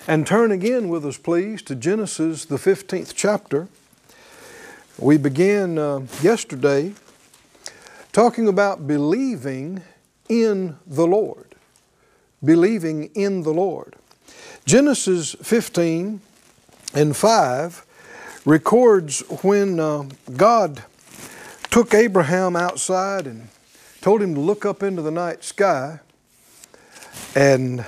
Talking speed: 100 wpm